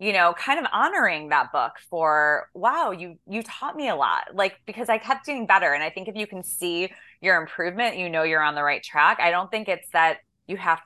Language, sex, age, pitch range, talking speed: English, female, 20-39, 155-195 Hz, 245 wpm